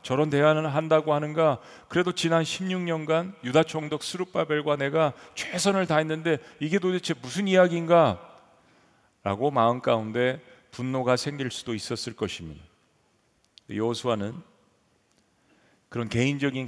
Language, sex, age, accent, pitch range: Korean, male, 40-59, native, 120-165 Hz